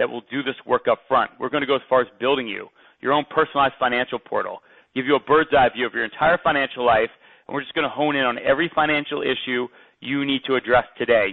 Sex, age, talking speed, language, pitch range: male, 30-49, 250 wpm, English, 125-150 Hz